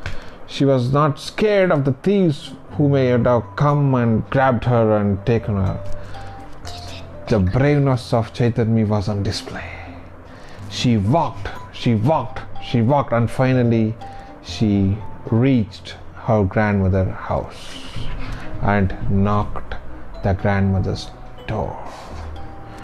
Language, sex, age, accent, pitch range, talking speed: English, male, 30-49, Indian, 105-160 Hz, 110 wpm